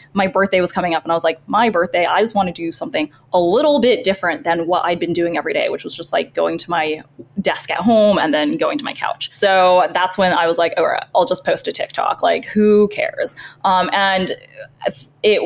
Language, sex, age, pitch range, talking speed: English, female, 10-29, 165-210 Hz, 245 wpm